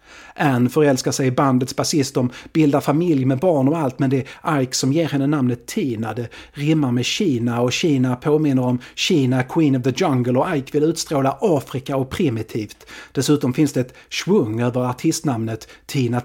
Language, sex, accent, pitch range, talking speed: Swedish, male, native, 125-145 Hz, 185 wpm